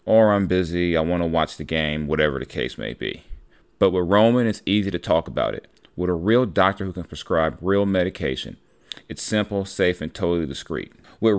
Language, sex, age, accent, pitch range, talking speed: English, male, 30-49, American, 85-100 Hz, 205 wpm